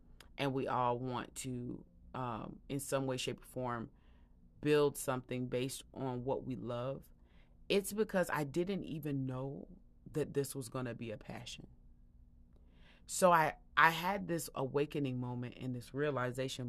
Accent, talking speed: American, 150 wpm